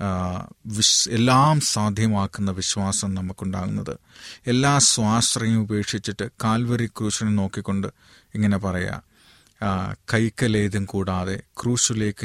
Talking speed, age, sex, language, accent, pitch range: 80 wpm, 30-49, male, Malayalam, native, 100-120 Hz